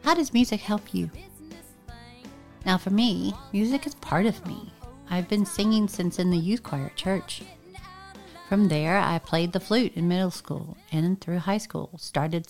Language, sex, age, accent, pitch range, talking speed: English, female, 40-59, American, 160-200 Hz, 180 wpm